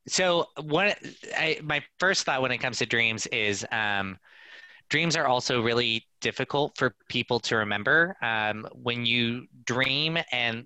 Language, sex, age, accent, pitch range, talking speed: English, male, 20-39, American, 105-140 Hz, 160 wpm